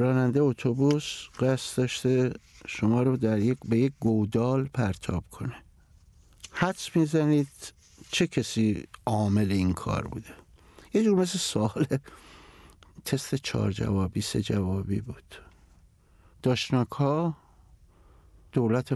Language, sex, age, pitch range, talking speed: Persian, male, 60-79, 100-140 Hz, 105 wpm